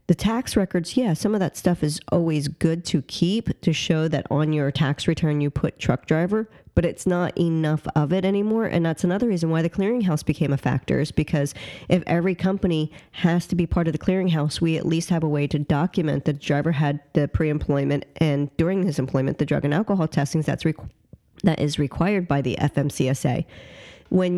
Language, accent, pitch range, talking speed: English, American, 145-180 Hz, 205 wpm